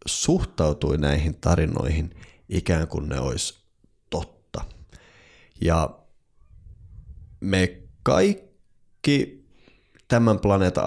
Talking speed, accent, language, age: 70 wpm, native, Finnish, 30-49